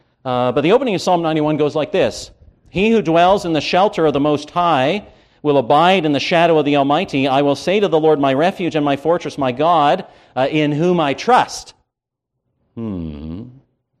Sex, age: male, 50-69